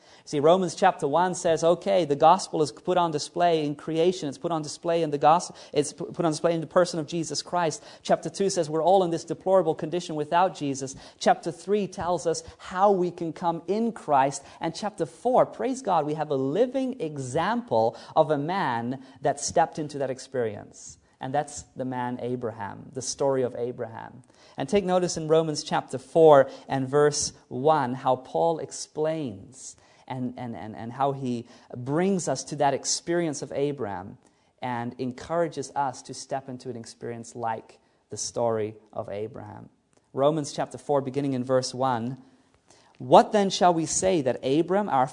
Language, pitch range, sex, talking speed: English, 135-180 Hz, male, 175 wpm